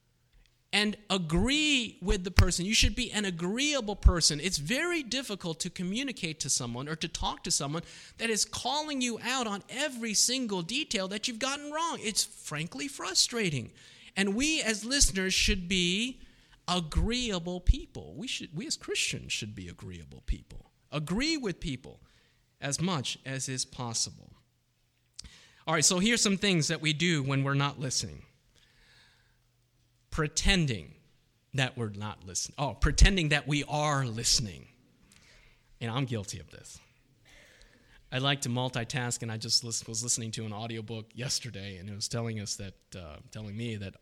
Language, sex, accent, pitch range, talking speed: English, male, American, 120-185 Hz, 160 wpm